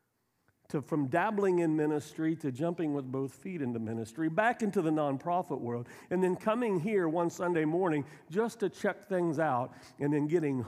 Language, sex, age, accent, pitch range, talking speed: English, male, 50-69, American, 120-155 Hz, 180 wpm